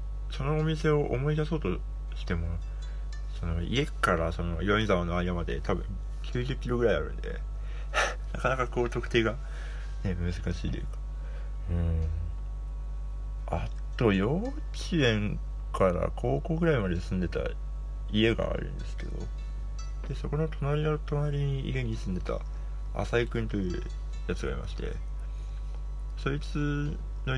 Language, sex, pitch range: Japanese, male, 80-130 Hz